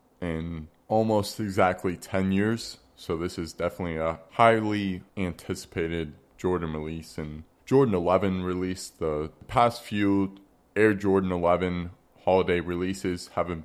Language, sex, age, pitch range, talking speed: English, male, 20-39, 90-105 Hz, 120 wpm